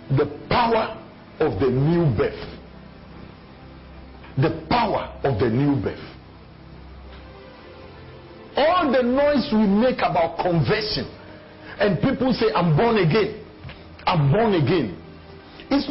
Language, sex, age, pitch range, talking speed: English, male, 50-69, 180-265 Hz, 110 wpm